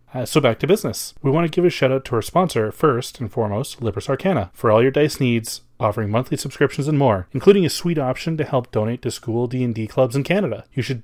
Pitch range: 115-145 Hz